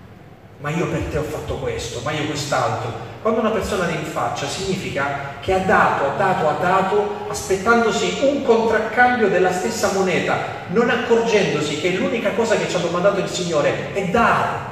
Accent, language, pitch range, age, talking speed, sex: native, Italian, 125-190 Hz, 40-59, 170 wpm, male